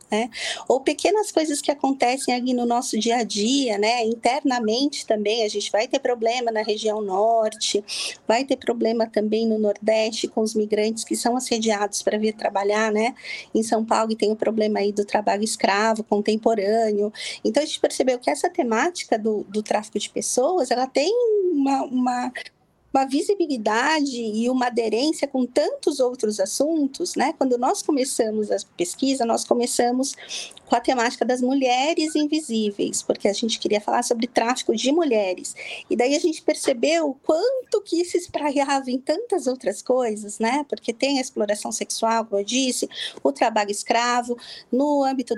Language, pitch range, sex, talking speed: Portuguese, 215-275 Hz, female, 170 wpm